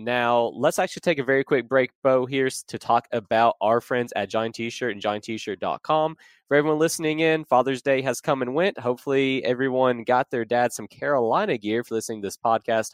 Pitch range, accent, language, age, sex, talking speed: 120-150 Hz, American, English, 20-39, male, 200 wpm